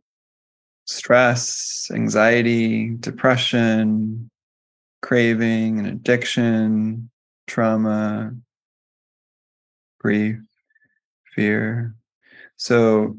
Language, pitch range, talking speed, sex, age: English, 105-130 Hz, 45 wpm, male, 20-39